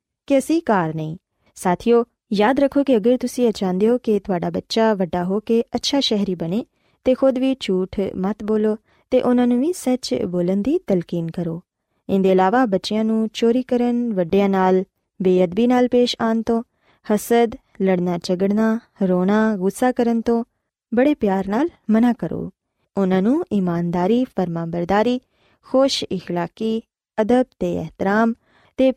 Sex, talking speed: female, 125 wpm